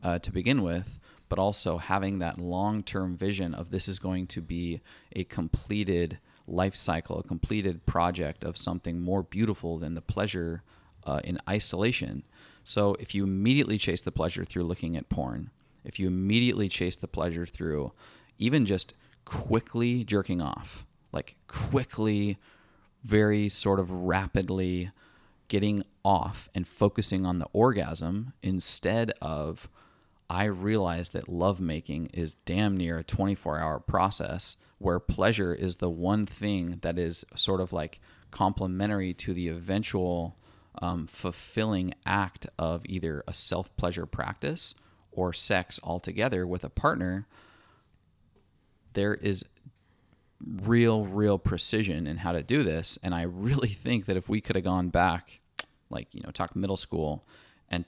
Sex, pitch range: male, 85-105 Hz